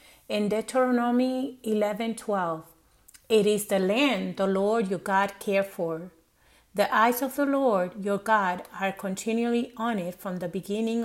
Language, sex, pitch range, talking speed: English, female, 190-240 Hz, 150 wpm